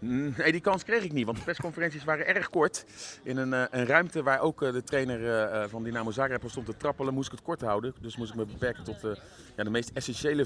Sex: male